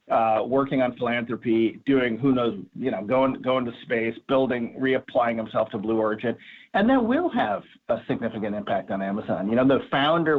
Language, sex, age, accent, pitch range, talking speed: English, male, 40-59, American, 125-175 Hz, 185 wpm